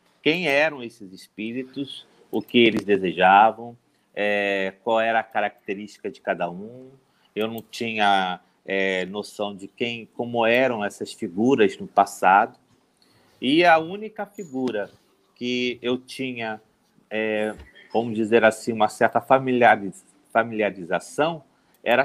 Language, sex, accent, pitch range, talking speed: Portuguese, male, Brazilian, 110-140 Hz, 115 wpm